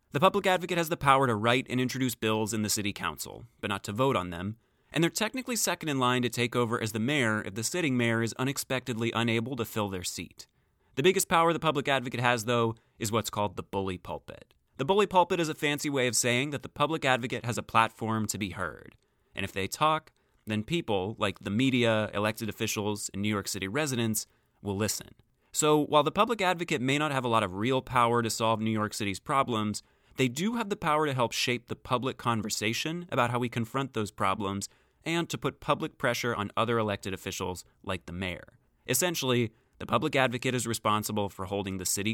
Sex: male